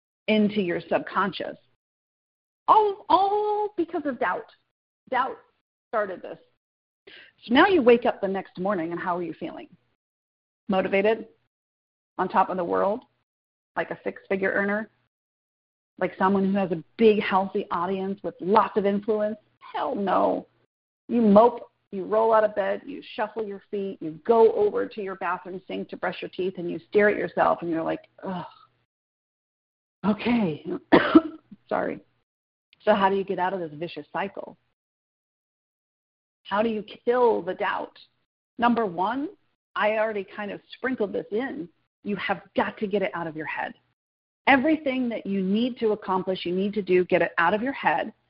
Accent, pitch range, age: American, 185-230 Hz, 40-59